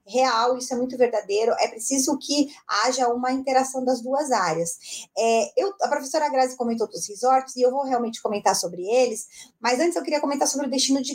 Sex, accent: female, Brazilian